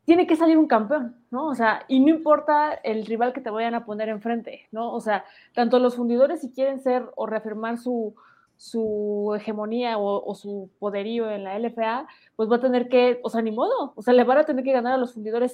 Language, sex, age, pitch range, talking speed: Spanish, female, 20-39, 230-290 Hz, 230 wpm